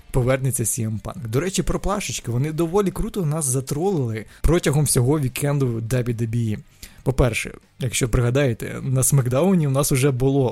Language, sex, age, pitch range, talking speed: Ukrainian, male, 20-39, 120-150 Hz, 145 wpm